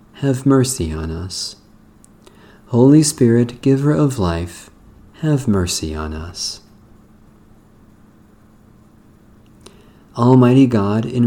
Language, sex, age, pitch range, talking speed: English, male, 40-59, 105-130 Hz, 85 wpm